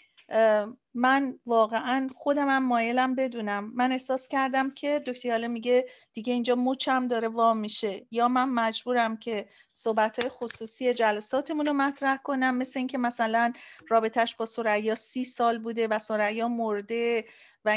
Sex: female